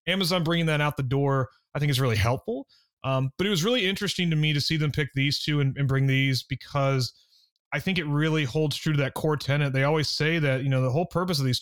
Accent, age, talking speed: American, 30-49, 265 wpm